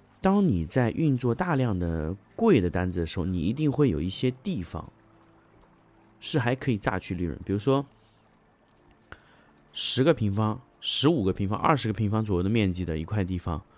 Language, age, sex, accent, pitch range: Chinese, 20-39, male, native, 95-120 Hz